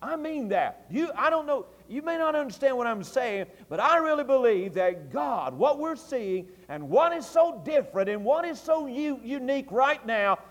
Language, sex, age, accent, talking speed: English, male, 50-69, American, 205 wpm